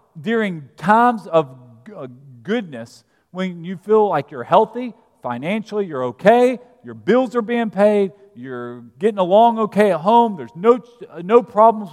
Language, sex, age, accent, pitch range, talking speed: English, male, 40-59, American, 175-240 Hz, 140 wpm